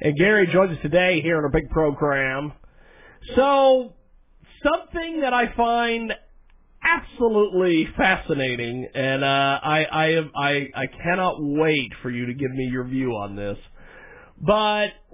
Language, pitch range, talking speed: English, 130-200 Hz, 145 wpm